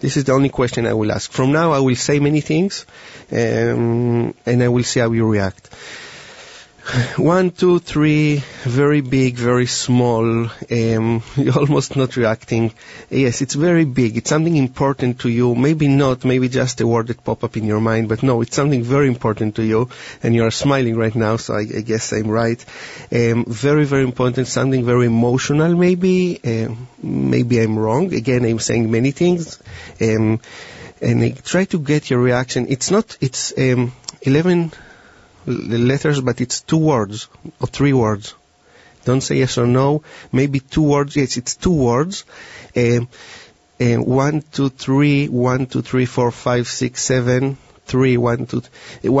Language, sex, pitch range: English, male, 120-140 Hz